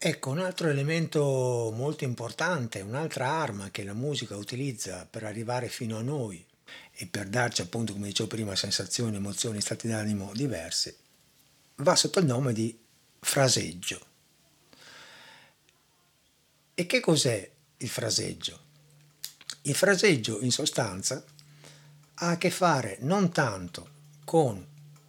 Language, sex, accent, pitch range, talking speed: Italian, male, native, 100-150 Hz, 120 wpm